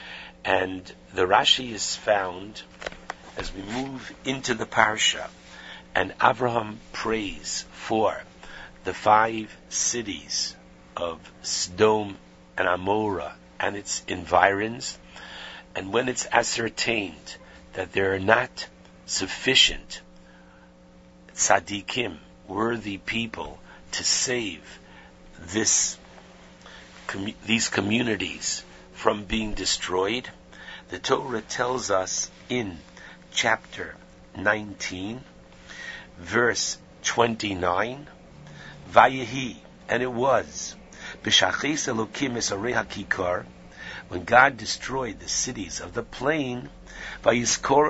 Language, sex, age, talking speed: English, male, 60-79, 90 wpm